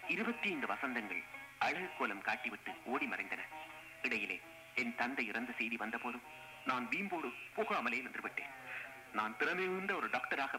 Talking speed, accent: 130 wpm, native